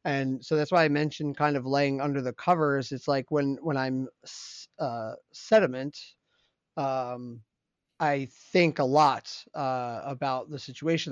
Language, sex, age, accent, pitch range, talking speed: English, male, 30-49, American, 125-155 Hz, 150 wpm